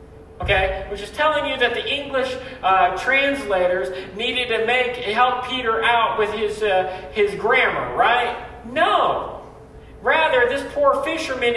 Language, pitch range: English, 230-280 Hz